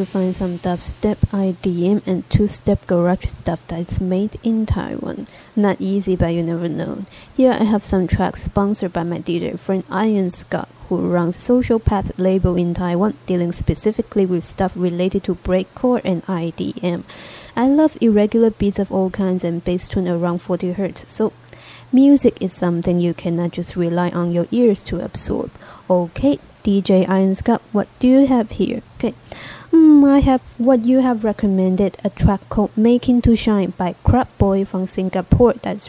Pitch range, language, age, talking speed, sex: 185-230 Hz, English, 20-39, 170 wpm, female